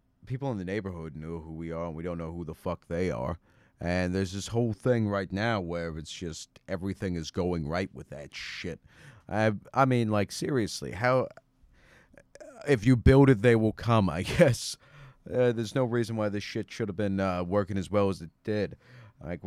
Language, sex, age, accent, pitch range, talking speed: English, male, 30-49, American, 90-110 Hz, 205 wpm